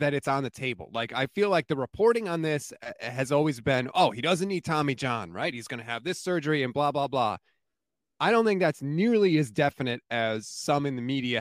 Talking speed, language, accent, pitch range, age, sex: 235 wpm, English, American, 130-180 Hz, 30-49, male